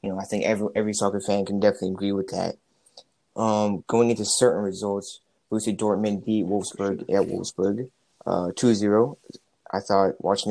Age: 20-39